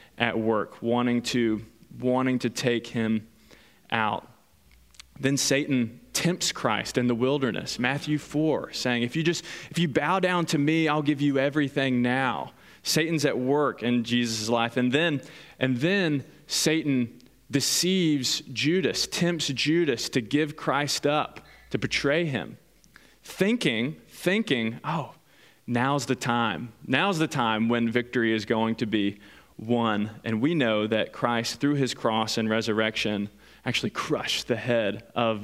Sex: male